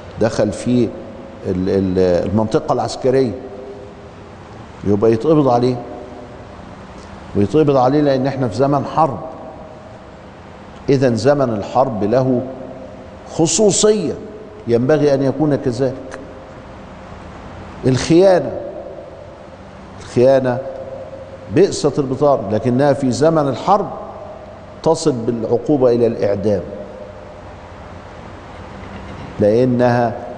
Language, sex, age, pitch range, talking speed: Arabic, male, 50-69, 100-135 Hz, 70 wpm